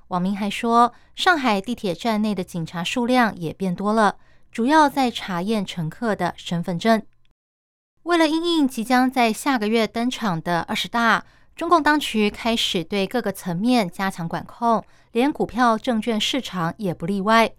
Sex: female